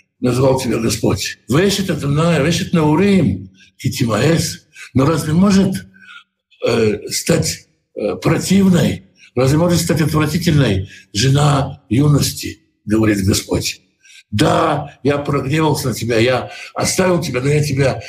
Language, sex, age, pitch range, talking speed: Russian, male, 60-79, 110-165 Hz, 100 wpm